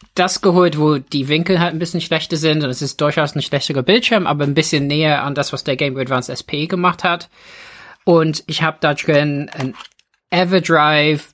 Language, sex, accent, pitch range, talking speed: German, male, German, 140-175 Hz, 200 wpm